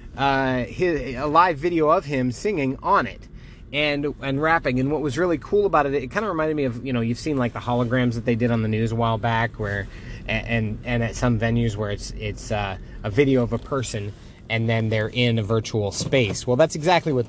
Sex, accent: male, American